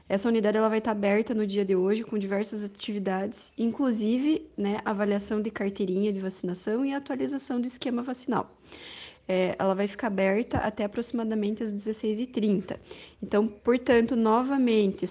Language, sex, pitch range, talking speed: Portuguese, female, 210-250 Hz, 145 wpm